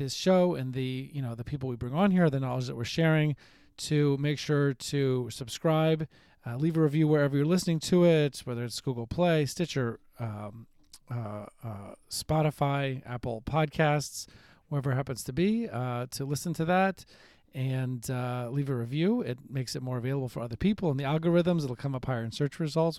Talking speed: 195 wpm